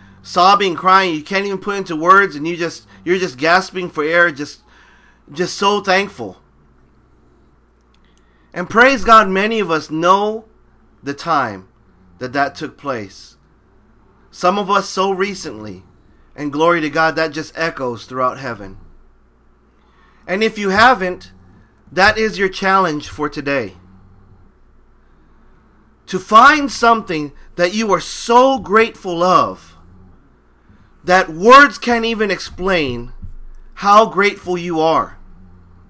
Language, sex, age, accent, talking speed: English, male, 30-49, American, 125 wpm